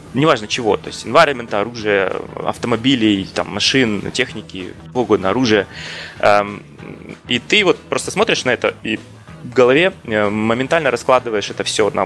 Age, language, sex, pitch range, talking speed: 20-39, Russian, male, 100-125 Hz, 135 wpm